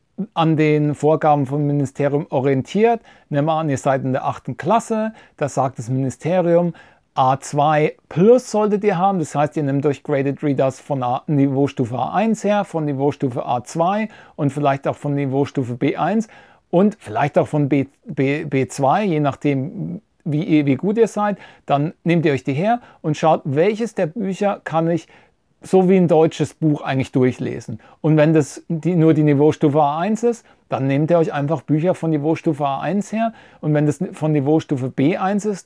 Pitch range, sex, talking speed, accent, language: 140-170 Hz, male, 170 wpm, German, English